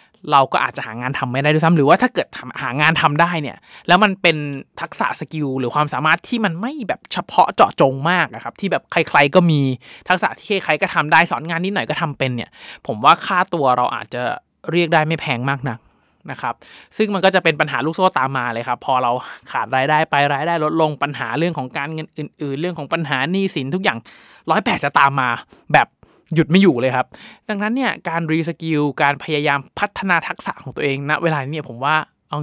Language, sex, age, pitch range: Thai, male, 20-39, 135-170 Hz